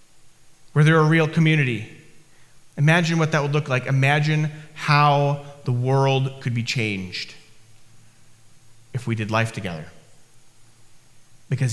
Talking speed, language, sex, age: 130 wpm, English, male, 30-49